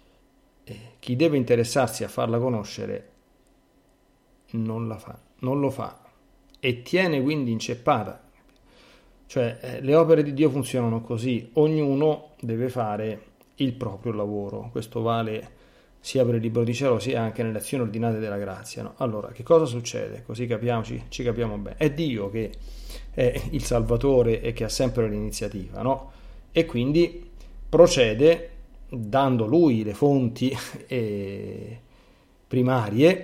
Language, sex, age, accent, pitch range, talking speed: Italian, male, 40-59, native, 110-135 Hz, 135 wpm